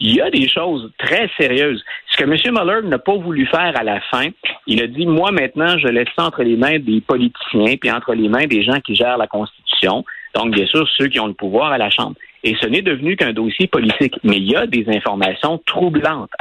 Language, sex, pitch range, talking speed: French, male, 115-170 Hz, 240 wpm